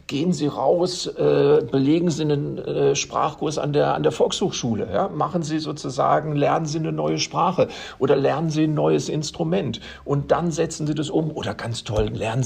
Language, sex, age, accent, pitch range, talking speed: German, male, 50-69, German, 130-165 Hz, 180 wpm